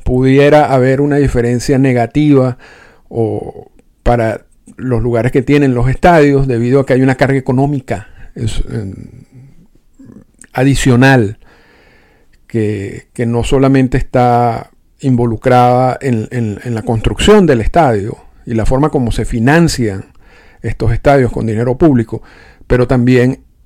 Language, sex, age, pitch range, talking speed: Spanish, male, 50-69, 115-140 Hz, 115 wpm